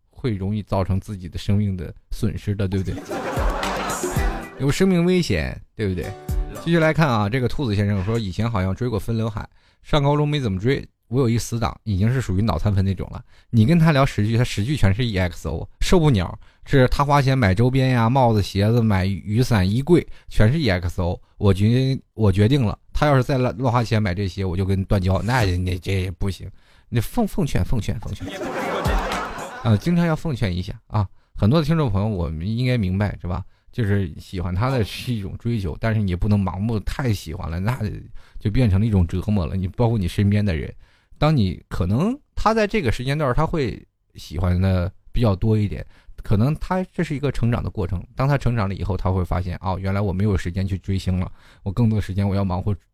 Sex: male